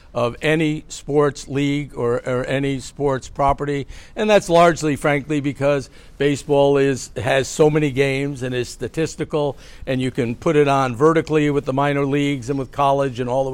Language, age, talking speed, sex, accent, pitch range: English, 60-79, 175 wpm, male, American, 130-150 Hz